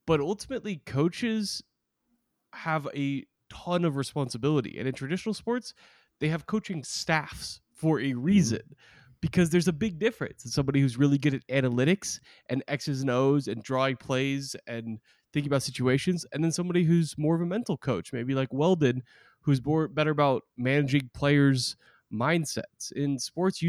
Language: English